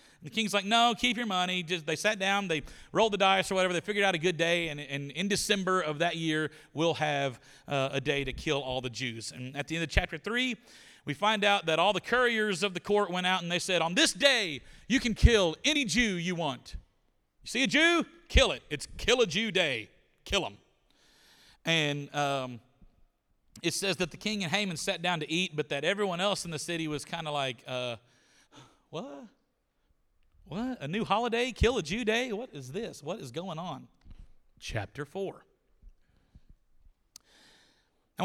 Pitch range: 145-200 Hz